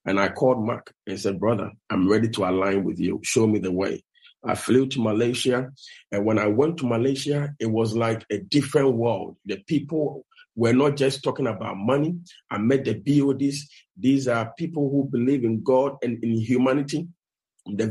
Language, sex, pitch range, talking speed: English, male, 110-145 Hz, 190 wpm